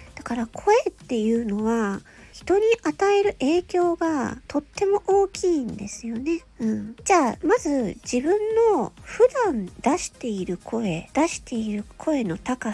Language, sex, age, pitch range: Japanese, female, 40-59, 220-355 Hz